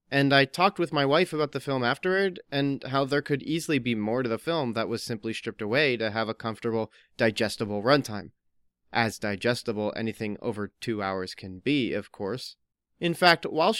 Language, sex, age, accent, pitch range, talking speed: English, male, 30-49, American, 115-150 Hz, 190 wpm